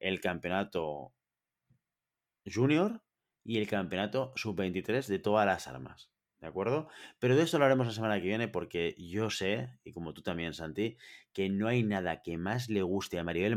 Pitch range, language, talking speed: 90-110 Hz, Spanish, 175 wpm